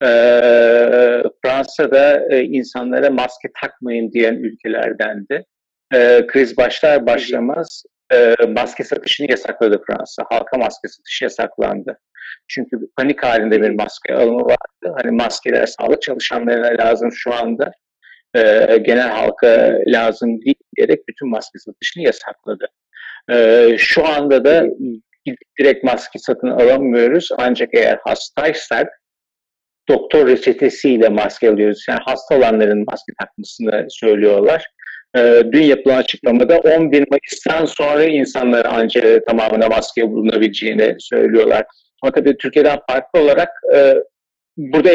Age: 50-69